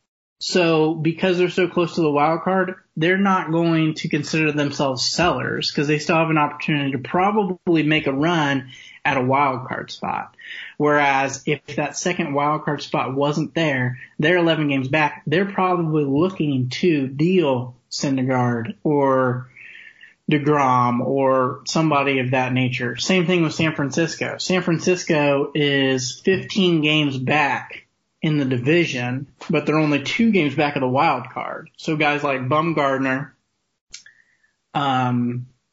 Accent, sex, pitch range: American, male, 135-160 Hz